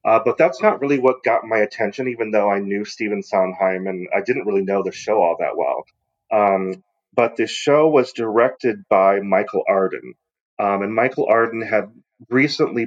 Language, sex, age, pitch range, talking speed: English, male, 30-49, 95-130 Hz, 185 wpm